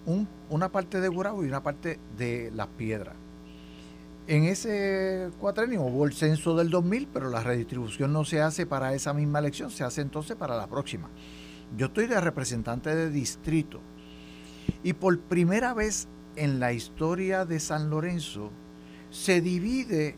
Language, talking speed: Spanish, 155 wpm